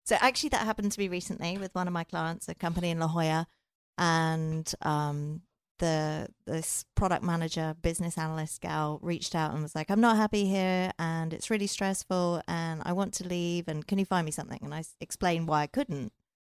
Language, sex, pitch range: English, female, 155-180 Hz